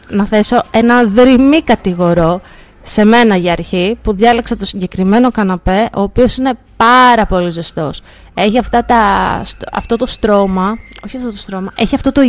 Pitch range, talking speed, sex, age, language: 190-245 Hz, 160 wpm, female, 20-39, Greek